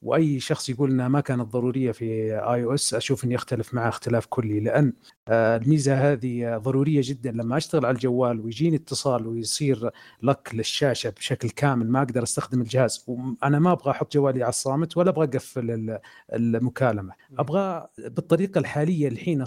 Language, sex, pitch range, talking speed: Arabic, male, 120-150 Hz, 160 wpm